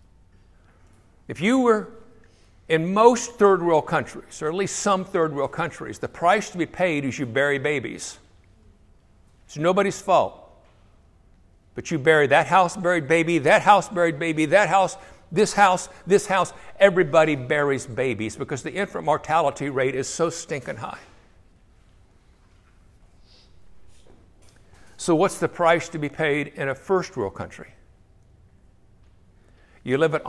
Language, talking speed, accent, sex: English, 140 wpm, American, male